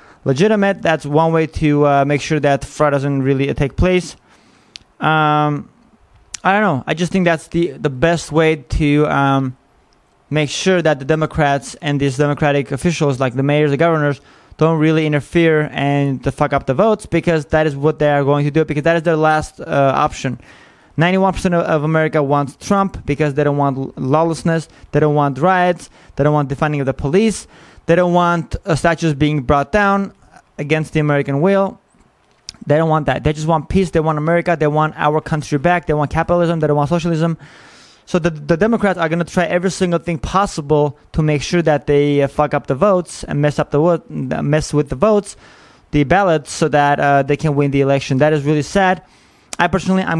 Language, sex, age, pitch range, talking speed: English, male, 20-39, 140-165 Hz, 200 wpm